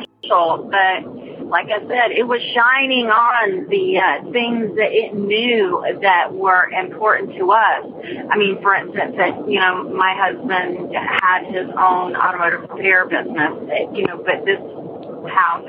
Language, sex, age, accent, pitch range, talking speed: English, female, 40-59, American, 185-235 Hz, 150 wpm